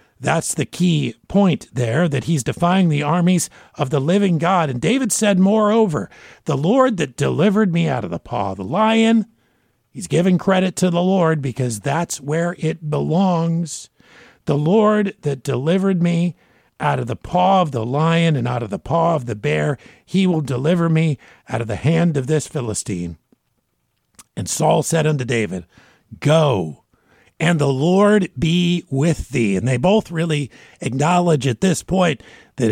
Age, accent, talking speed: 50-69, American, 170 wpm